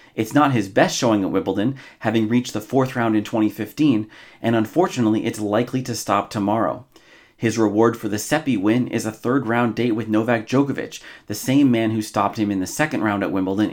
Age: 30-49